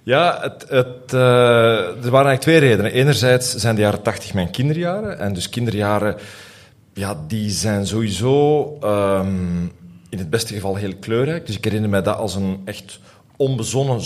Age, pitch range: 40-59, 100-145 Hz